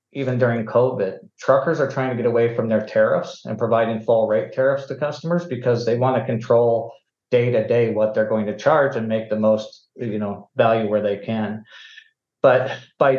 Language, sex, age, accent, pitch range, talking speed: English, male, 50-69, American, 110-125 Hz, 190 wpm